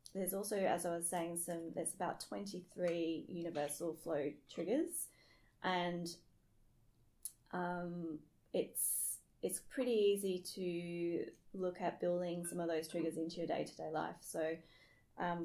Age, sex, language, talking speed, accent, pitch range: 20-39, female, English, 130 wpm, Australian, 170-180 Hz